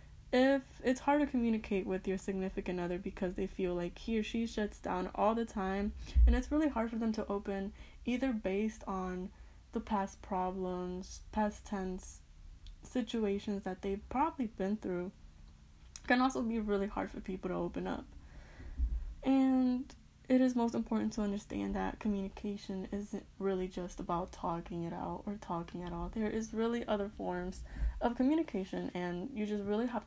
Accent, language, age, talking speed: American, English, 10-29, 170 wpm